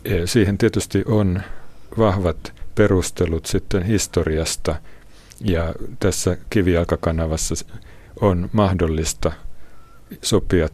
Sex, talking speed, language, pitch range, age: male, 75 wpm, Finnish, 80-100 Hz, 60-79